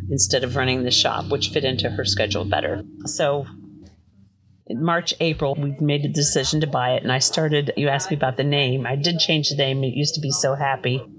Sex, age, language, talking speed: female, 50-69, English, 225 wpm